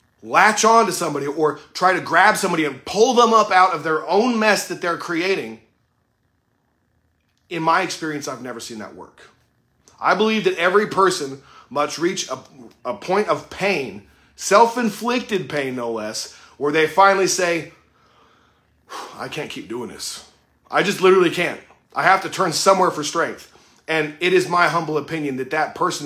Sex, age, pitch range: male, 30-49, 145-190 Hz